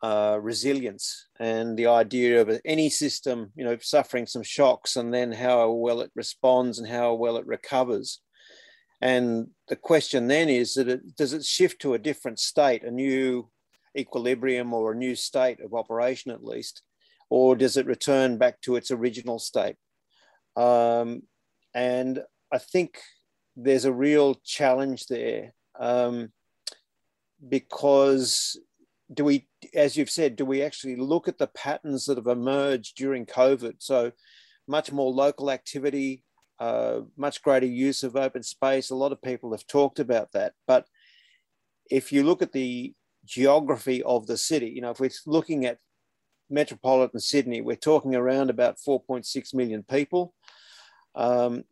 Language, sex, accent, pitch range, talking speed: English, male, Australian, 125-145 Hz, 150 wpm